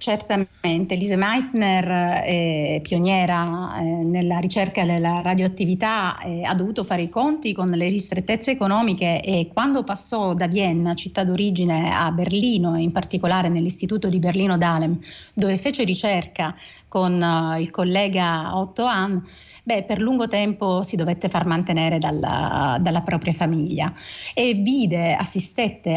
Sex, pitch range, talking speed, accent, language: female, 175-210 Hz, 135 wpm, native, Italian